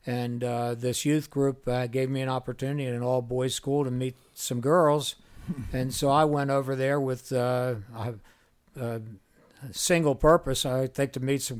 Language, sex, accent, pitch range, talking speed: English, male, American, 125-140 Hz, 180 wpm